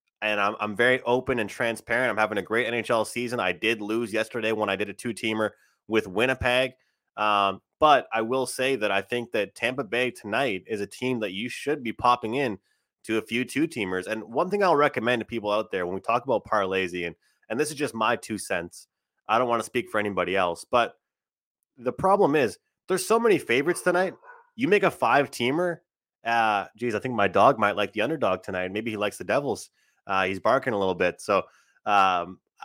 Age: 20-39